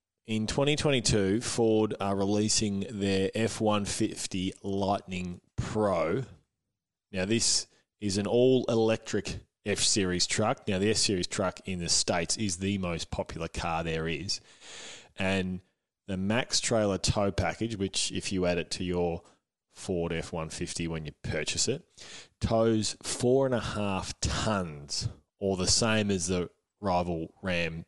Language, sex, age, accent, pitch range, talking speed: English, male, 20-39, Australian, 90-115 Hz, 135 wpm